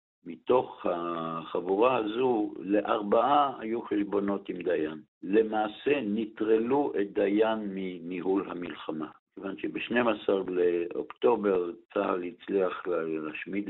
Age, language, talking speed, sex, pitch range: 60-79, Hebrew, 90 wpm, male, 85-115 Hz